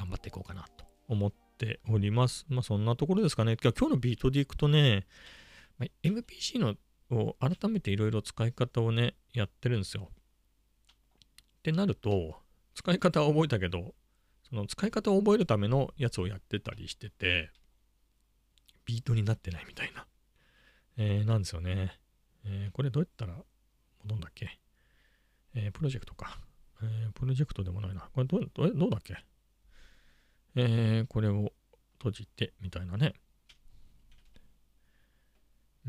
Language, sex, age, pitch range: Japanese, male, 40-59, 95-125 Hz